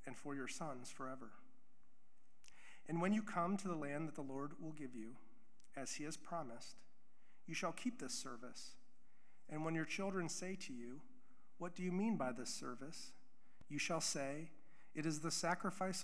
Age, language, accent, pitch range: 40-59, English, American, 145-190 Hz